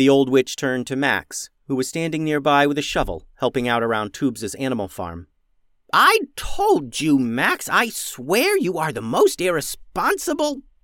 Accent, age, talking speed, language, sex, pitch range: American, 30-49, 165 wpm, English, male, 100-160 Hz